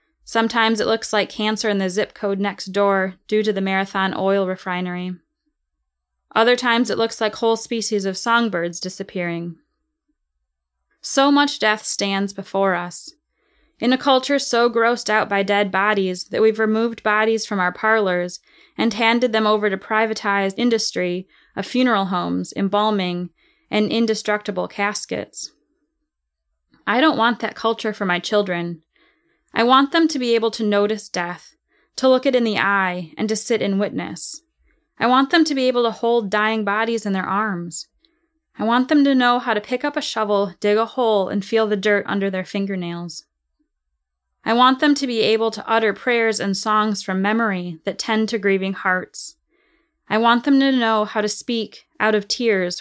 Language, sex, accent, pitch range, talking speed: English, female, American, 195-235 Hz, 175 wpm